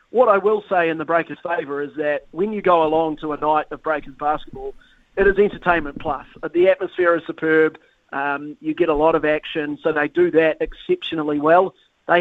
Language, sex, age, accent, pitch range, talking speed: English, male, 30-49, Australian, 150-165 Hz, 205 wpm